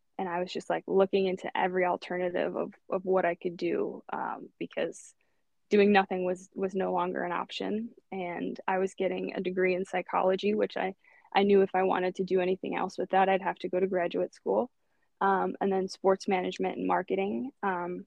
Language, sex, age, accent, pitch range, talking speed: English, female, 20-39, American, 180-195 Hz, 205 wpm